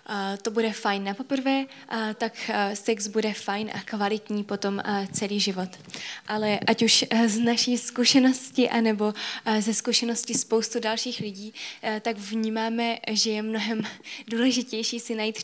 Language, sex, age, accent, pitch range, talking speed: Czech, female, 20-39, native, 210-230 Hz, 135 wpm